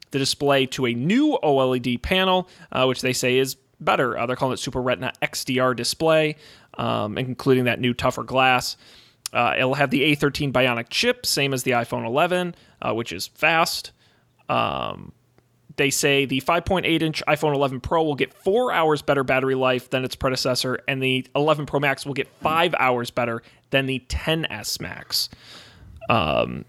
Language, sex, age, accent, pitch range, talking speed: English, male, 30-49, American, 125-155 Hz, 170 wpm